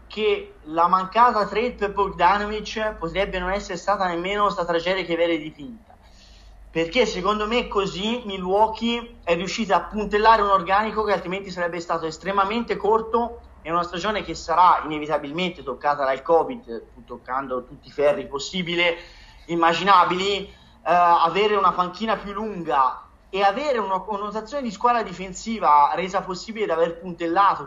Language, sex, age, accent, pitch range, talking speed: Italian, male, 30-49, native, 165-210 Hz, 145 wpm